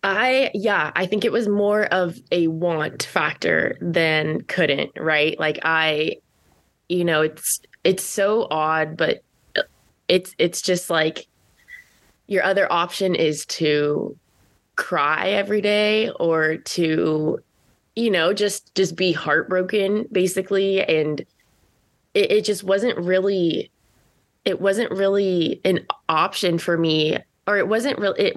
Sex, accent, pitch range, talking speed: female, American, 155-195 Hz, 125 wpm